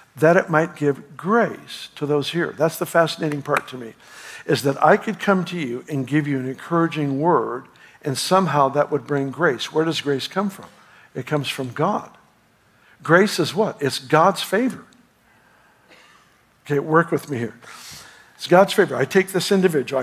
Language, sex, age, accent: English, male, 60-79, American